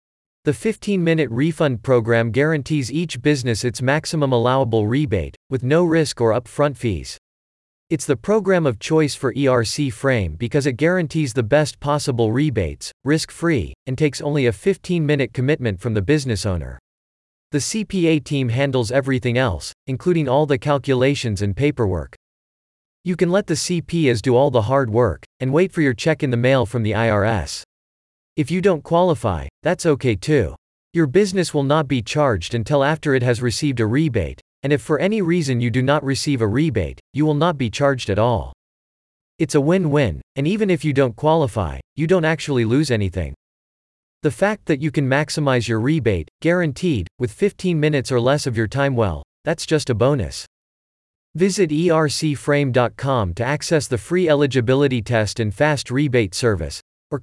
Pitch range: 110-155 Hz